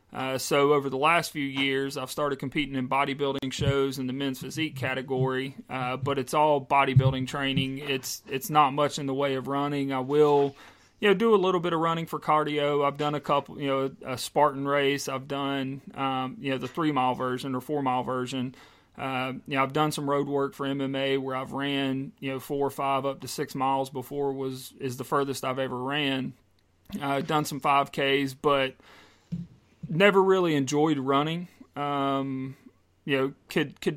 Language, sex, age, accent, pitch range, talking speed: English, male, 30-49, American, 135-145 Hz, 200 wpm